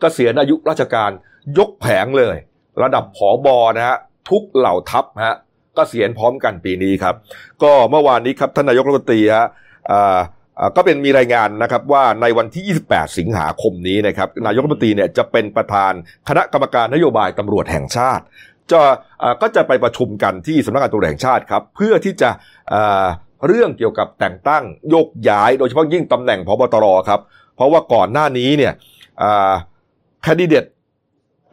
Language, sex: Thai, male